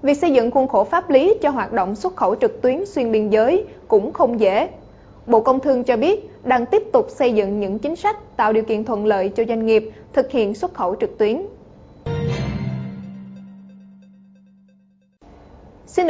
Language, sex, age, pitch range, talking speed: Vietnamese, female, 20-39, 220-305 Hz, 180 wpm